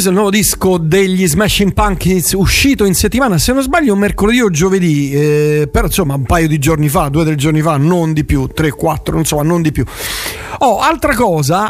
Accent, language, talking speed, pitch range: native, Italian, 210 wpm, 150-185 Hz